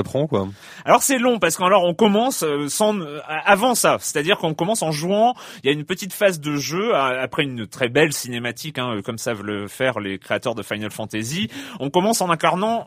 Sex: male